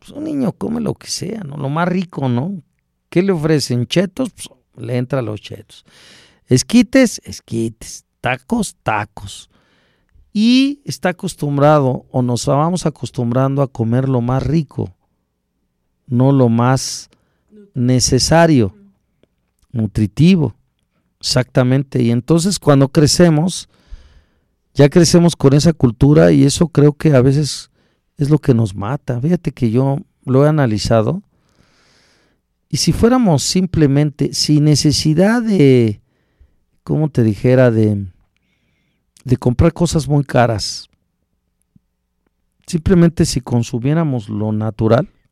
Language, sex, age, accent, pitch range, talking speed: Spanish, male, 40-59, Mexican, 115-160 Hz, 120 wpm